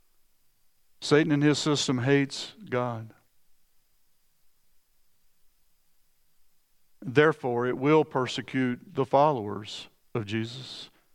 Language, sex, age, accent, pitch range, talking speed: English, male, 50-69, American, 130-165 Hz, 75 wpm